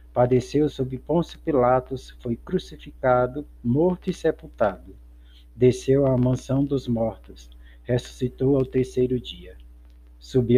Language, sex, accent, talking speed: Portuguese, male, Brazilian, 110 wpm